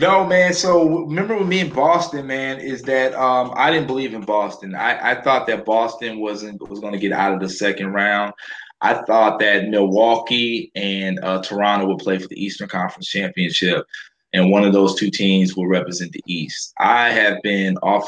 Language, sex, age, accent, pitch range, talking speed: English, male, 20-39, American, 95-120 Hz, 195 wpm